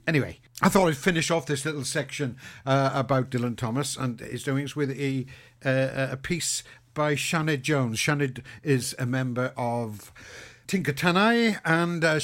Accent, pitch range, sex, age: British, 120-145 Hz, male, 60-79